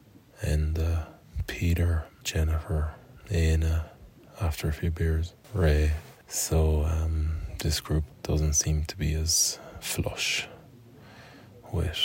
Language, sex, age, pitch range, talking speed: English, male, 20-39, 80-90 Hz, 105 wpm